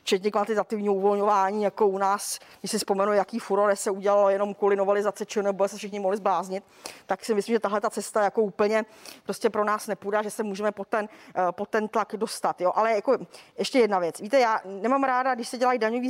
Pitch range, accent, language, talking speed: 195-230 Hz, native, Czech, 215 wpm